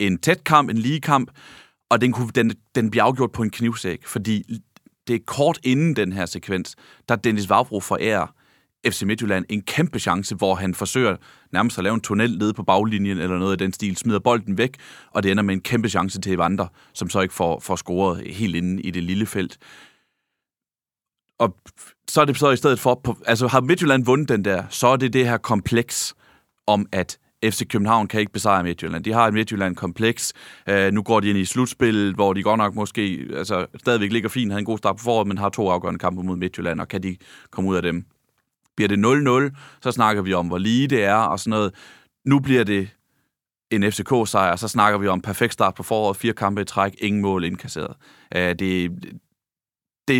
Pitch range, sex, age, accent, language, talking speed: 95-120 Hz, male, 30-49, native, Danish, 215 wpm